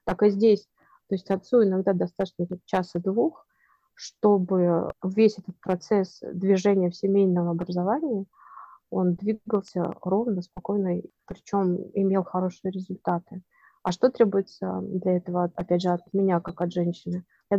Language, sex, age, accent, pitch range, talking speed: Russian, female, 30-49, native, 180-205 Hz, 135 wpm